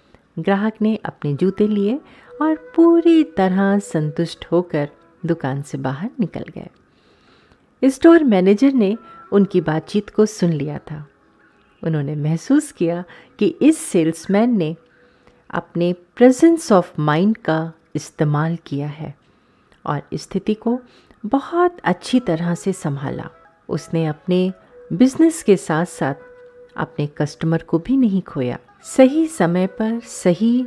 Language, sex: Hindi, female